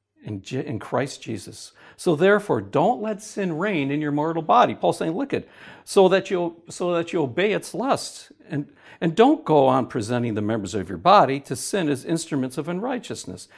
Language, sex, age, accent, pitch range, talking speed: English, male, 60-79, American, 105-160 Hz, 190 wpm